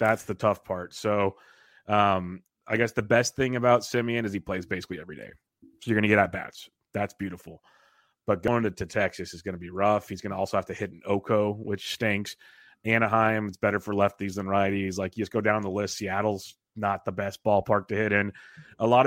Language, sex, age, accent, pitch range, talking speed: English, male, 30-49, American, 100-115 Hz, 230 wpm